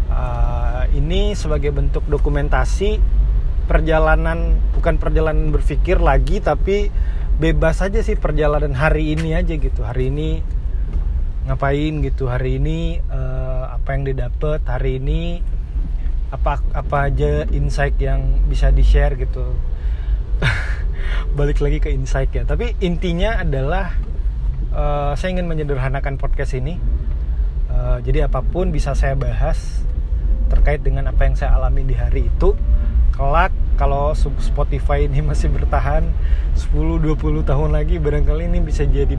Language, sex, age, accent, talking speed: Indonesian, male, 30-49, native, 125 wpm